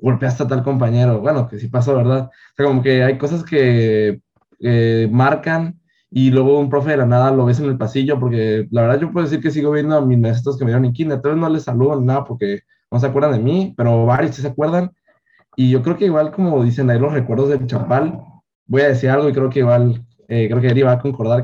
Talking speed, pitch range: 255 wpm, 120-145 Hz